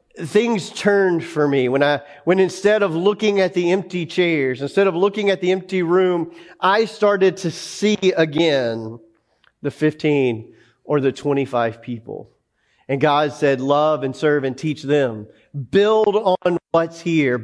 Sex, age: male, 40-59